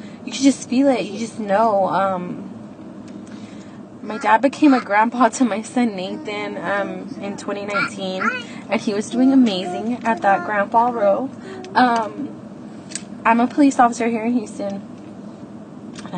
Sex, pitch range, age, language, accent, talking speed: female, 220-275 Hz, 20-39, English, American, 140 wpm